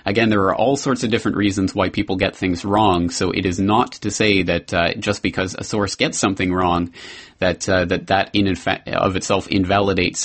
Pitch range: 95-125 Hz